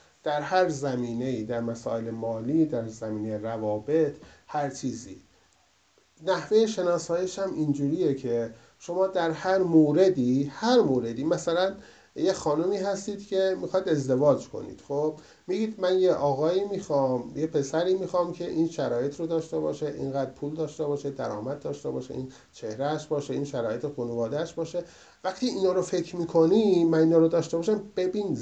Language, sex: Persian, male